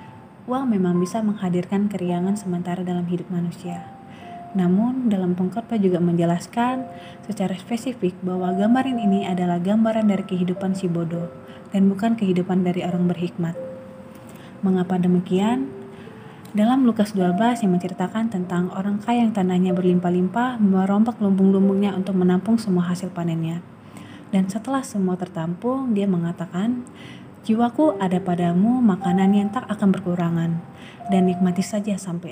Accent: native